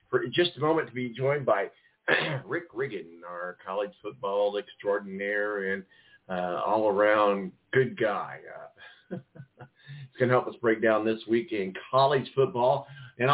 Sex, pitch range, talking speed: male, 115-150 Hz, 150 wpm